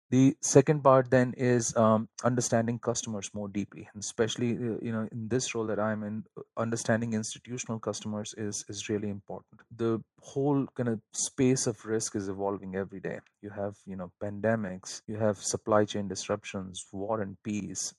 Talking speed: 170 wpm